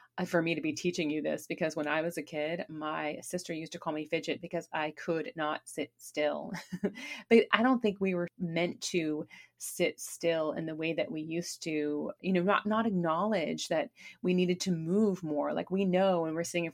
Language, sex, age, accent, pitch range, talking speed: English, female, 30-49, American, 155-190 Hz, 220 wpm